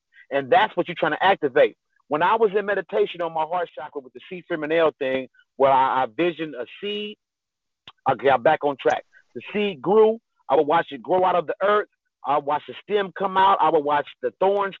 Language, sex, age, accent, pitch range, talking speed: English, male, 40-59, American, 160-210 Hz, 225 wpm